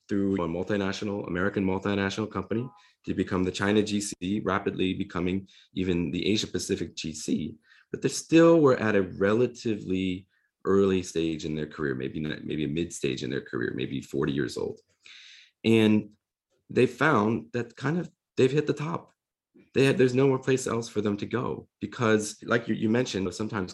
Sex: male